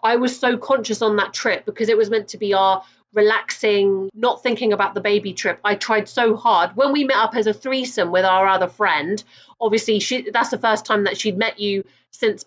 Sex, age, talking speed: female, 30-49, 225 wpm